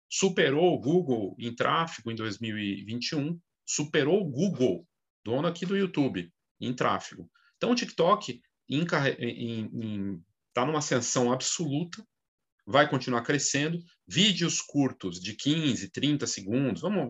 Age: 40-59